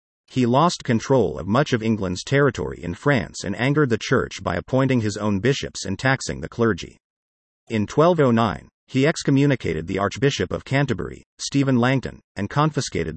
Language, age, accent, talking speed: English, 50-69, American, 160 wpm